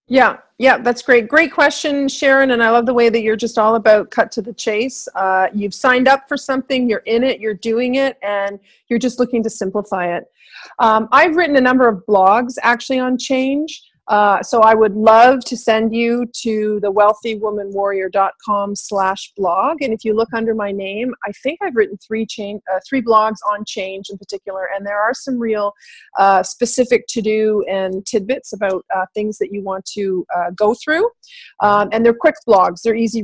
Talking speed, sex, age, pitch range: 205 wpm, female, 40-59, 210-260 Hz